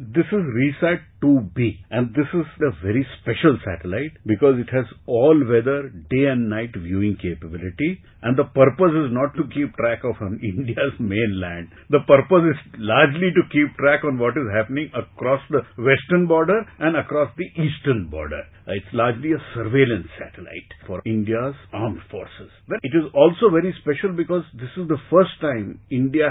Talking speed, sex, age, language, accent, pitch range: 170 wpm, male, 50-69, English, Indian, 105-140 Hz